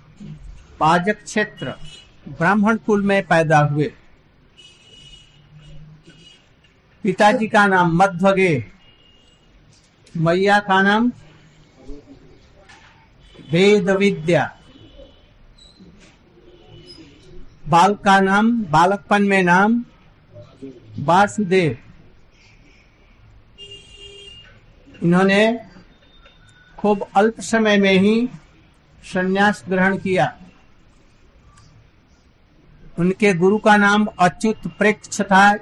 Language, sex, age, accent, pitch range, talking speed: Hindi, male, 60-79, native, 135-200 Hz, 65 wpm